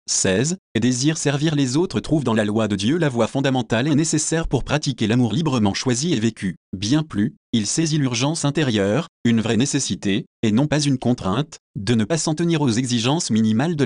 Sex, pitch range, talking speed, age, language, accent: male, 110-150 Hz, 200 wpm, 30-49, French, French